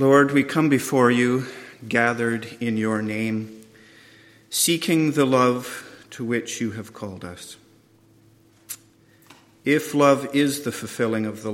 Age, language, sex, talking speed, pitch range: 50-69, English, male, 130 wpm, 110-140 Hz